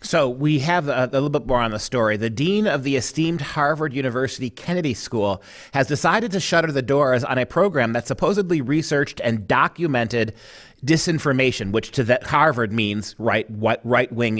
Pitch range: 130-175 Hz